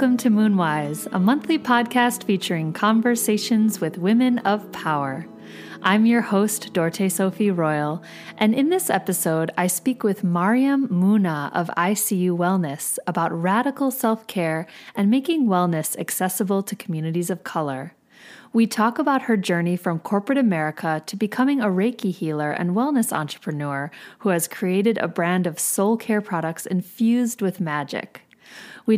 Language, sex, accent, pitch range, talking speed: English, female, American, 165-235 Hz, 145 wpm